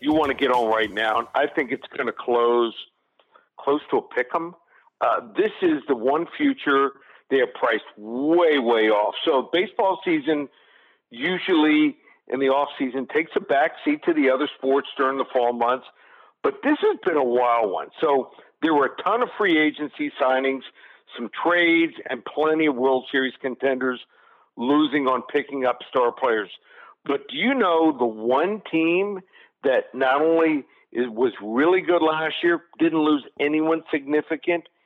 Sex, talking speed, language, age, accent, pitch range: male, 165 wpm, English, 50-69, American, 135-175 Hz